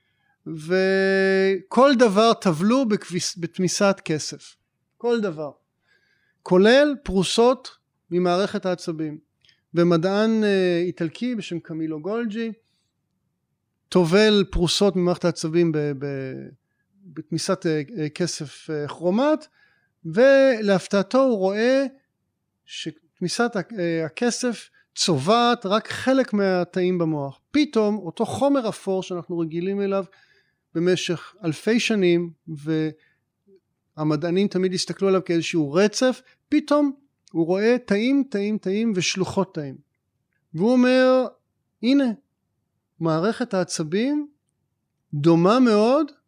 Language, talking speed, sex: Hebrew, 85 wpm, male